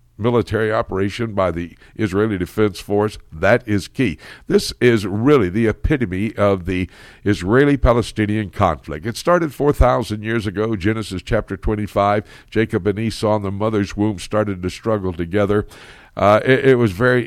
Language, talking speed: English, 150 wpm